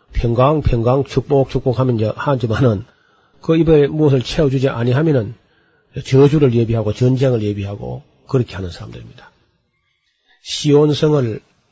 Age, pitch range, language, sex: 40-59, 115-150 Hz, Korean, male